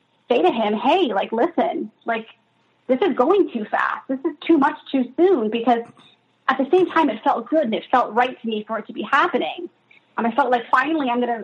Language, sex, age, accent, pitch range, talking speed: English, female, 20-39, American, 225-270 Hz, 225 wpm